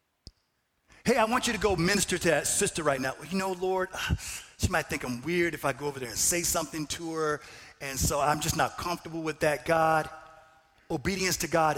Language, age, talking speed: English, 50-69, 215 wpm